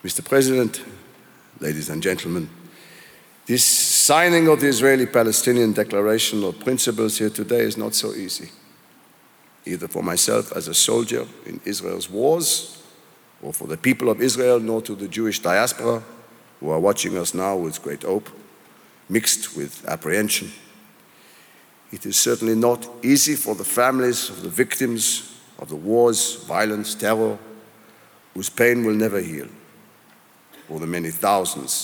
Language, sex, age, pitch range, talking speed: English, male, 50-69, 100-120 Hz, 140 wpm